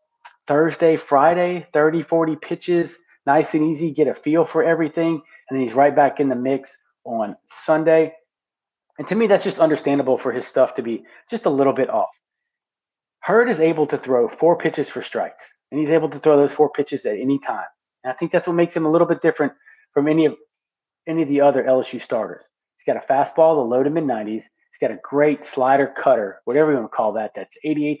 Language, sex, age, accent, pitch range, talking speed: English, male, 30-49, American, 135-165 Hz, 215 wpm